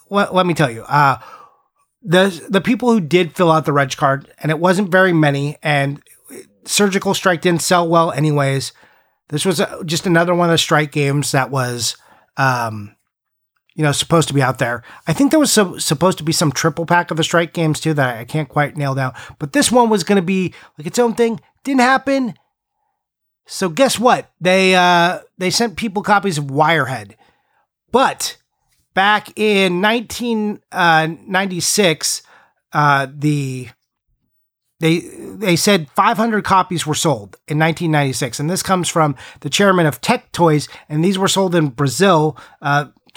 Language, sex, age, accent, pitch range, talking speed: English, male, 30-49, American, 150-195 Hz, 170 wpm